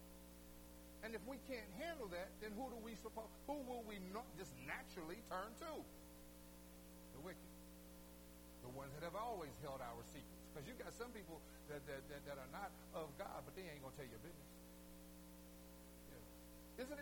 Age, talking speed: 60-79, 185 wpm